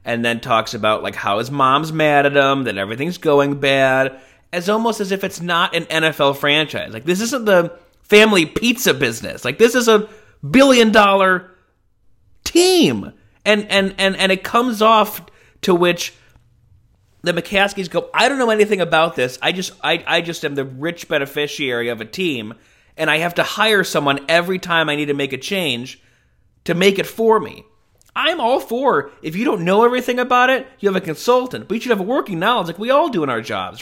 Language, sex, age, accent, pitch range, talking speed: English, male, 30-49, American, 140-210 Hz, 200 wpm